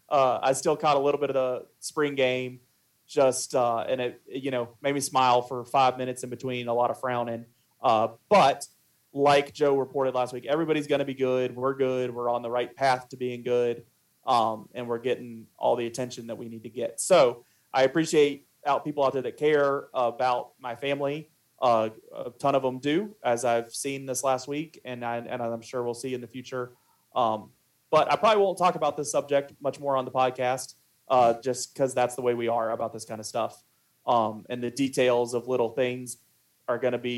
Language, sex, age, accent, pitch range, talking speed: English, male, 30-49, American, 120-135 Hz, 220 wpm